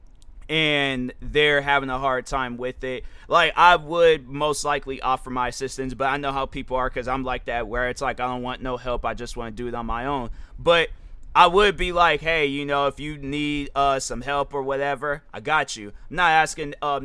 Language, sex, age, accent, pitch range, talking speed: English, male, 20-39, American, 130-170 Hz, 230 wpm